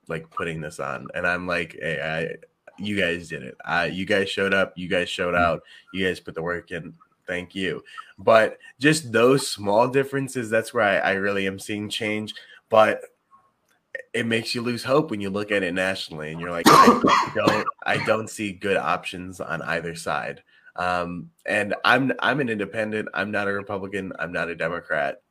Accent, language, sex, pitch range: American, English, male, 100-130 Hz